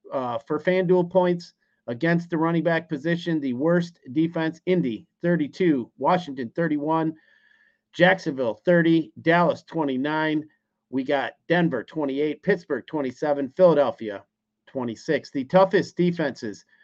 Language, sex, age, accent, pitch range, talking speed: English, male, 50-69, American, 145-185 Hz, 110 wpm